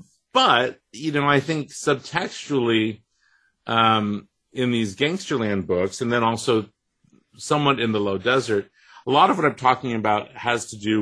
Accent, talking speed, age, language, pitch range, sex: American, 160 wpm, 40-59, English, 100-120 Hz, male